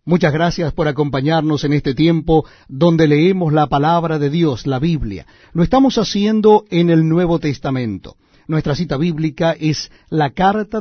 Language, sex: Spanish, male